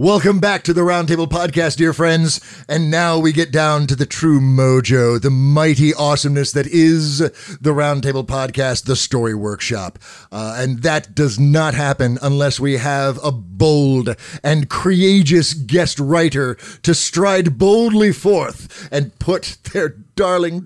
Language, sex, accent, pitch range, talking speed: English, male, American, 135-175 Hz, 150 wpm